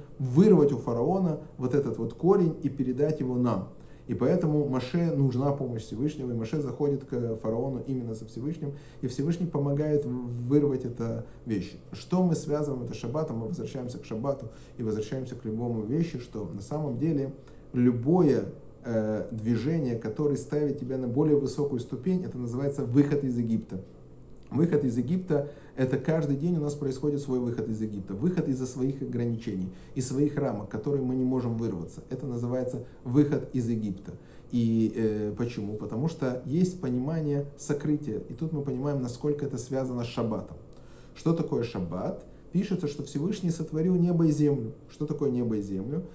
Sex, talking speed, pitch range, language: male, 165 wpm, 120-150 Hz, Russian